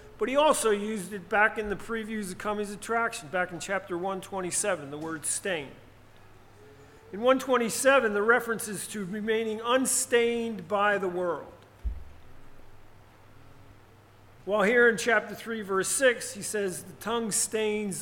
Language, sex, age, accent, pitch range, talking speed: English, male, 40-59, American, 135-220 Hz, 140 wpm